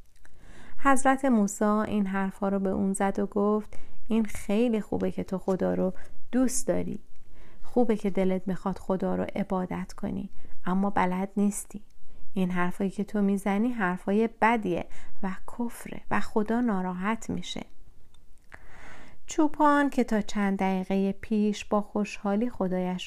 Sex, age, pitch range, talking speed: female, 30-49, 180-210 Hz, 135 wpm